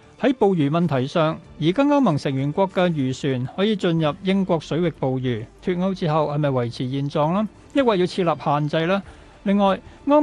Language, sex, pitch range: Chinese, male, 140-190 Hz